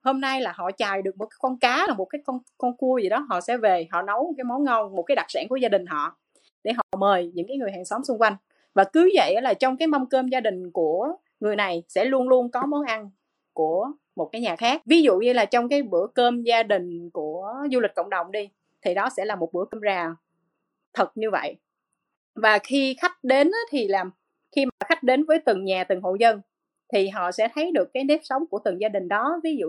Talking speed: 255 wpm